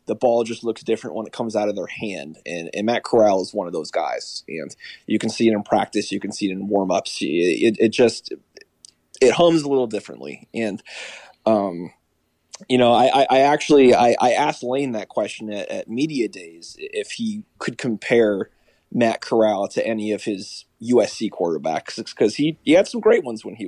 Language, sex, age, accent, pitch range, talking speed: English, male, 20-39, American, 105-150 Hz, 200 wpm